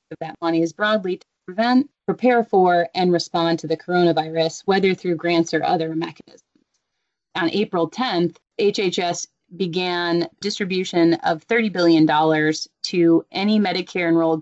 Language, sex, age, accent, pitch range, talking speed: English, female, 30-49, American, 165-190 Hz, 130 wpm